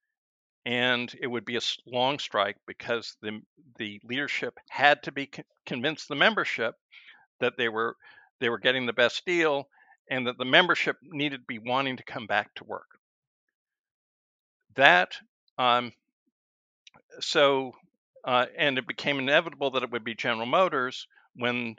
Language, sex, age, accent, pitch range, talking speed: English, male, 60-79, American, 120-155 Hz, 150 wpm